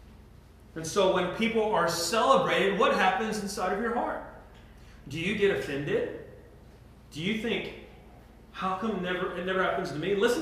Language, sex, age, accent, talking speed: English, male, 30-49, American, 160 wpm